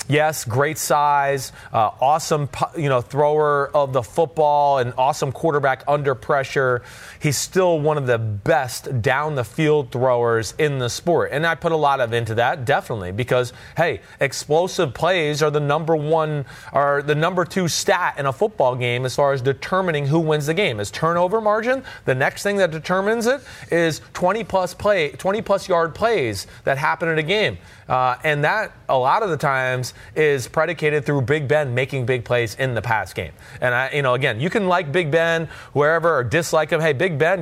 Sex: male